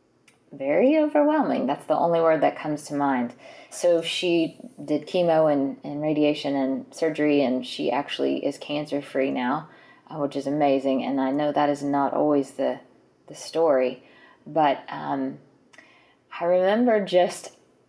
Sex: female